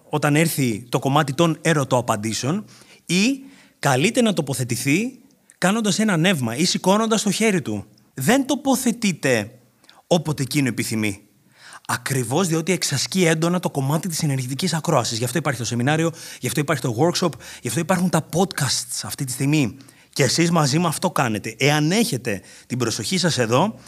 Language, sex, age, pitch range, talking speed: Greek, male, 30-49, 115-165 Hz, 160 wpm